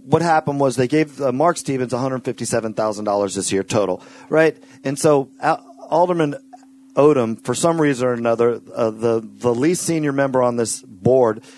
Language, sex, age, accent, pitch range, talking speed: English, male, 40-59, American, 135-180 Hz, 175 wpm